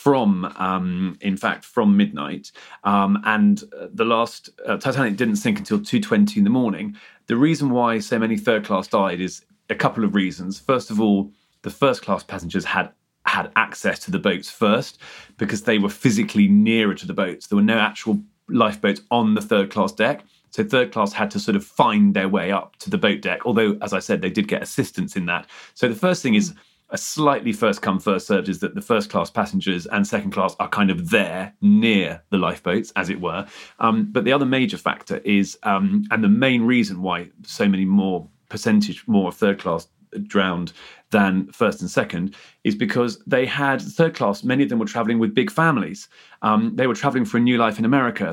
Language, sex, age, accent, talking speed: English, male, 30-49, British, 205 wpm